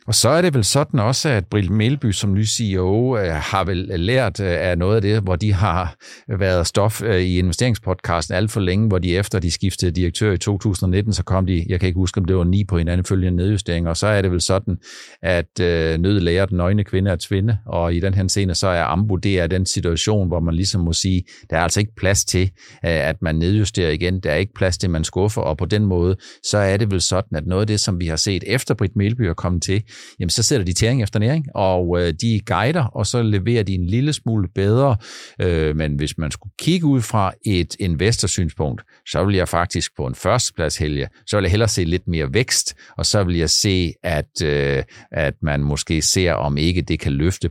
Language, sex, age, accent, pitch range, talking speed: Danish, male, 60-79, native, 85-105 Hz, 230 wpm